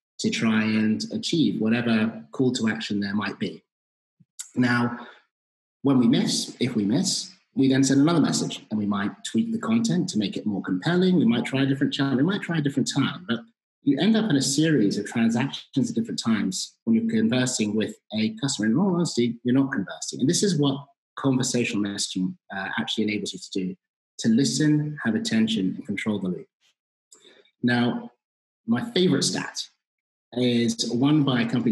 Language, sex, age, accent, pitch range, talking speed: English, male, 30-49, British, 110-185 Hz, 185 wpm